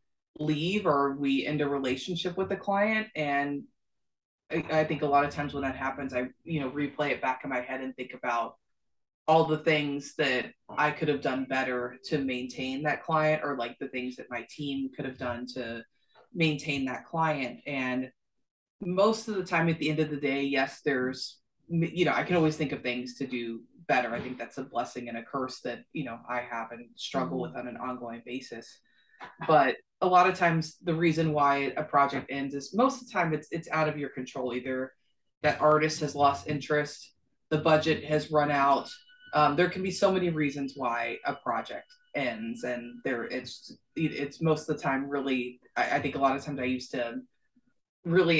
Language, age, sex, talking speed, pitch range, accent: English, 20-39, female, 205 wpm, 130-155 Hz, American